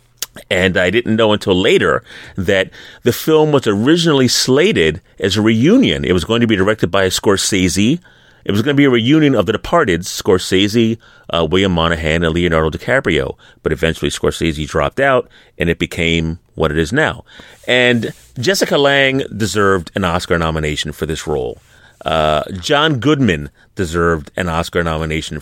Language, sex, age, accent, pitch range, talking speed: English, male, 30-49, American, 90-135 Hz, 165 wpm